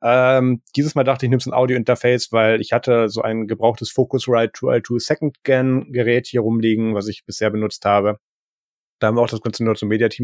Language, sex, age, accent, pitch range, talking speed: German, male, 30-49, German, 115-130 Hz, 200 wpm